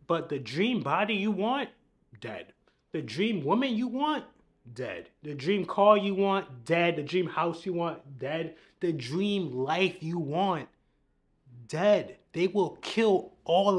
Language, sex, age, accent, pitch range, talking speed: English, male, 20-39, American, 170-230 Hz, 150 wpm